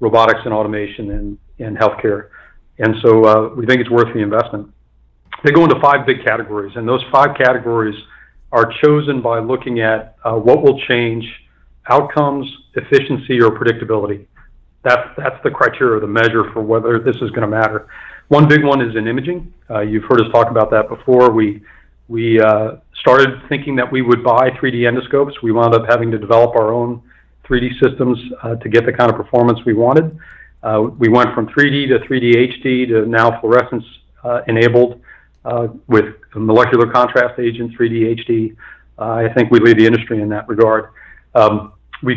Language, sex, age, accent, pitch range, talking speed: English, male, 40-59, American, 110-125 Hz, 180 wpm